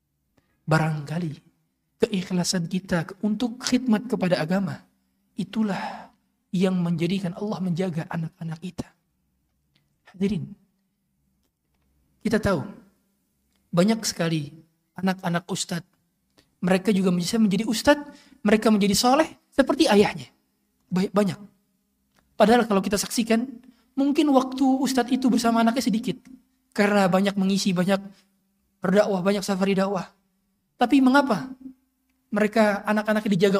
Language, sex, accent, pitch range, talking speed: Indonesian, male, native, 165-225 Hz, 100 wpm